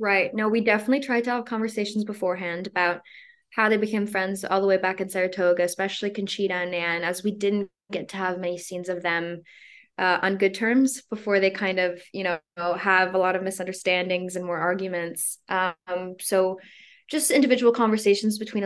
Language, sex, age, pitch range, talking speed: English, female, 20-39, 175-200 Hz, 185 wpm